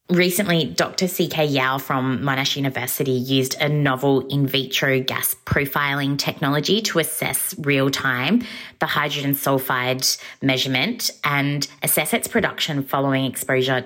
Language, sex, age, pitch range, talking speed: English, female, 20-39, 130-160 Hz, 120 wpm